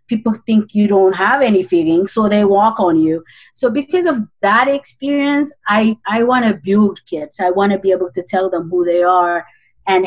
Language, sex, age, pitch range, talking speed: English, female, 30-49, 170-210 Hz, 210 wpm